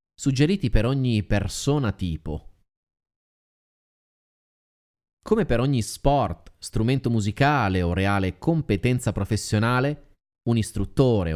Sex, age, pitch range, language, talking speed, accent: male, 30-49, 95-135 Hz, Italian, 90 wpm, native